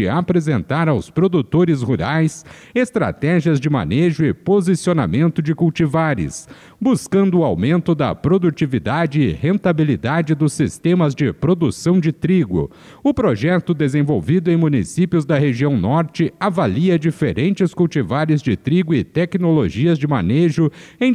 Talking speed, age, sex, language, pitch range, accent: 120 wpm, 50-69, male, Portuguese, 150-180 Hz, Brazilian